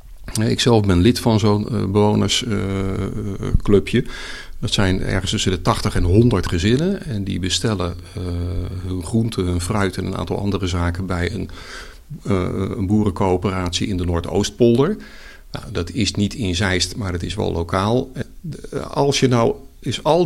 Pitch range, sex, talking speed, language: 95-120 Hz, male, 160 wpm, Dutch